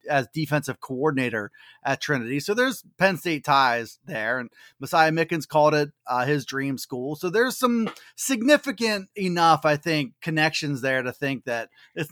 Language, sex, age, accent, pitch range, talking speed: English, male, 30-49, American, 140-185 Hz, 165 wpm